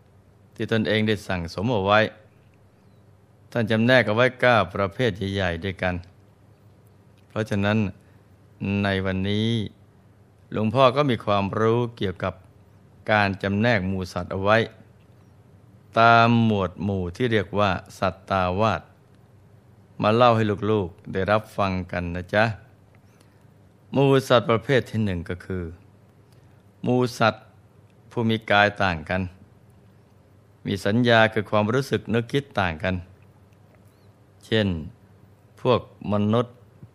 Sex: male